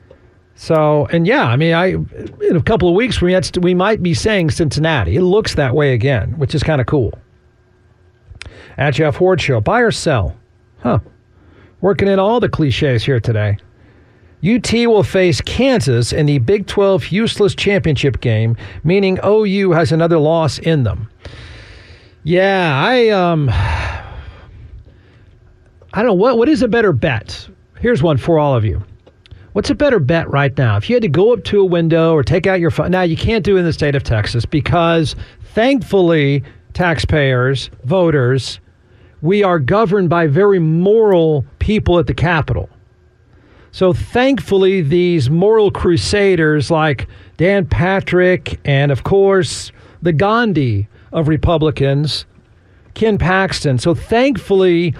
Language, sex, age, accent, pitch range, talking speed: English, male, 50-69, American, 115-185 Hz, 155 wpm